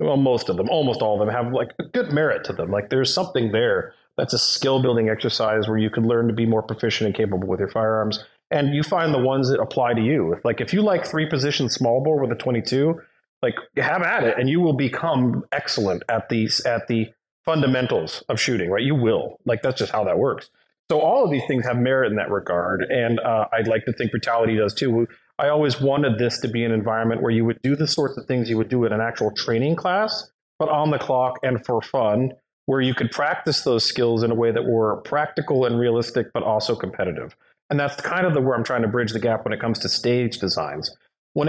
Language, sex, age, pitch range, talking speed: English, male, 30-49, 115-140 Hz, 245 wpm